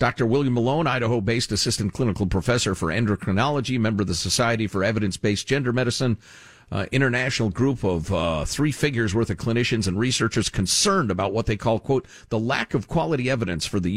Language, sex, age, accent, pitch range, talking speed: English, male, 50-69, American, 100-130 Hz, 180 wpm